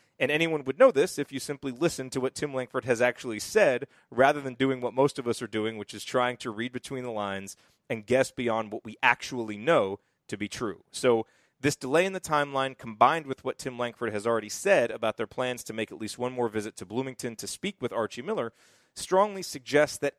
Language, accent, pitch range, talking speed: English, American, 115-150 Hz, 230 wpm